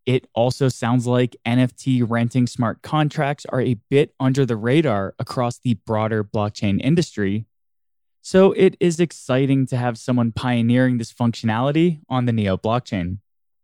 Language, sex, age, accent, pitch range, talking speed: English, male, 20-39, American, 110-145 Hz, 145 wpm